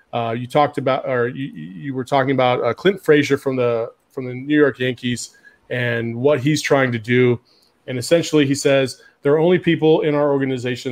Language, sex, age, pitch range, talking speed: English, male, 30-49, 120-150 Hz, 205 wpm